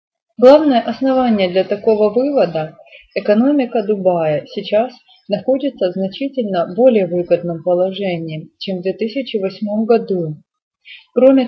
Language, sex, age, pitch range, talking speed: Russian, female, 30-49, 190-250 Hz, 100 wpm